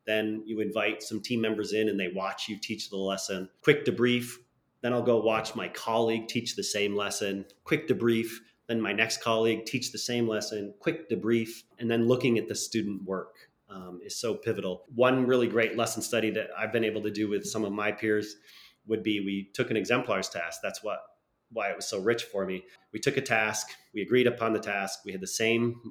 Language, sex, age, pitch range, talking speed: English, male, 30-49, 105-120 Hz, 220 wpm